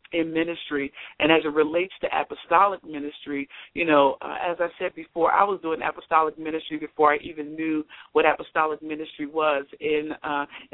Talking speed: 175 wpm